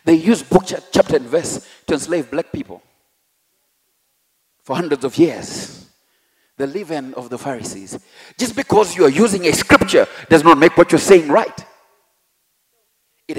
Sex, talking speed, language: male, 155 wpm, English